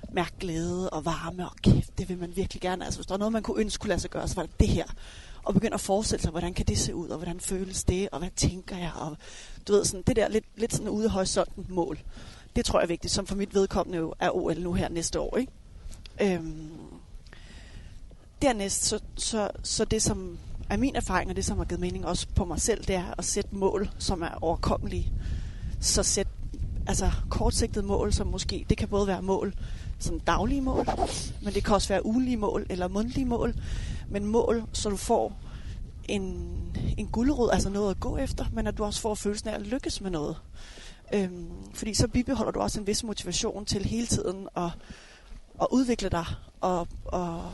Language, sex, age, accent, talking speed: Danish, female, 30-49, native, 210 wpm